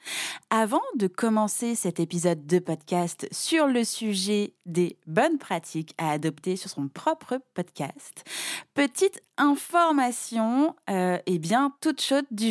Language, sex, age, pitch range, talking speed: French, female, 20-39, 185-250 Hz, 130 wpm